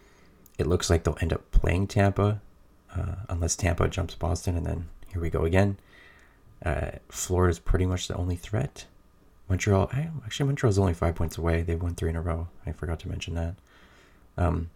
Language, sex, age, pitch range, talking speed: English, male, 30-49, 80-95 Hz, 190 wpm